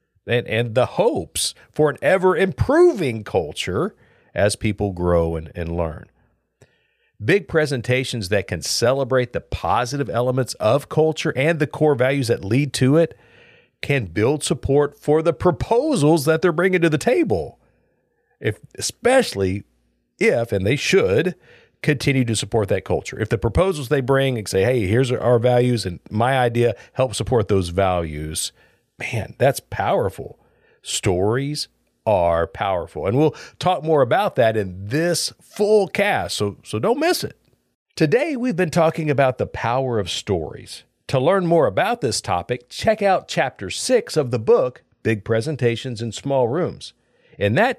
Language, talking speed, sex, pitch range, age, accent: English, 155 wpm, male, 110-160 Hz, 50-69, American